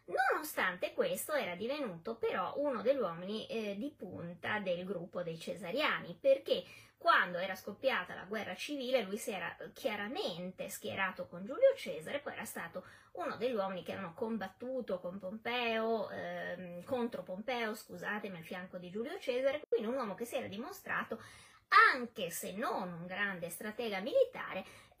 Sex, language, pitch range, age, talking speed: female, Italian, 190-275 Hz, 20-39, 155 wpm